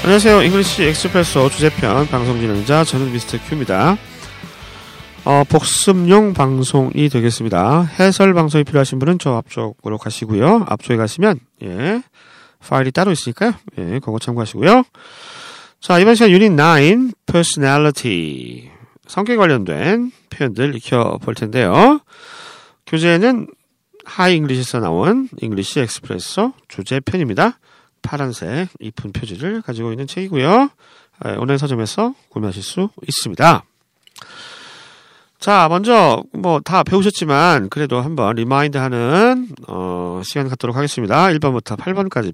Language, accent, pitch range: Korean, native, 125-200 Hz